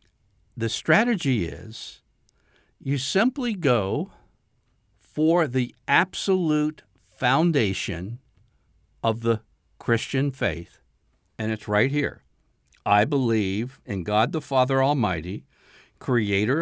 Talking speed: 95 wpm